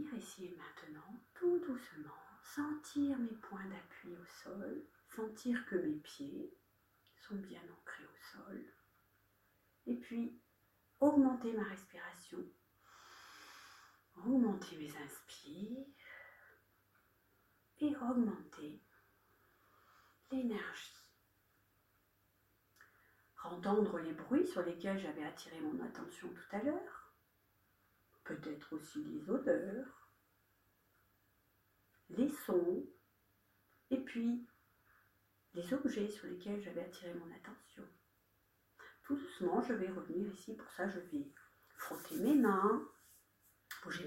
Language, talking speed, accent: French, 95 wpm, French